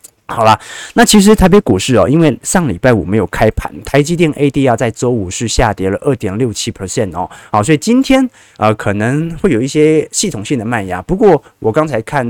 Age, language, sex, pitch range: 20-39, Chinese, male, 110-150 Hz